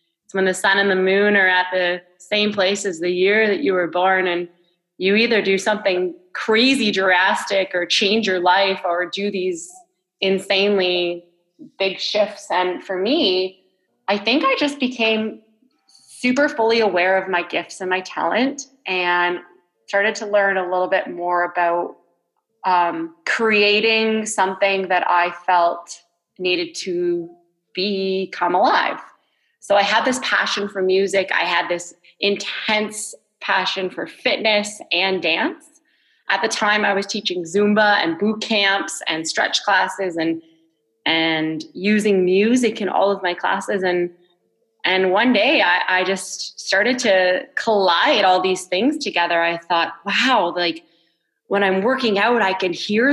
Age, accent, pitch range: 20-39, American, 180-215 Hz